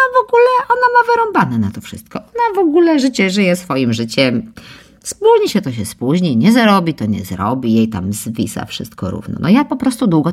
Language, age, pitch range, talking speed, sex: Polish, 50-69, 130-215 Hz, 205 wpm, female